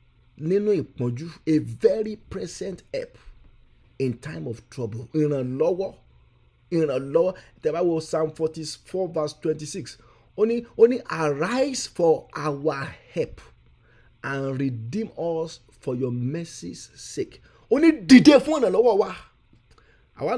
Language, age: English, 50-69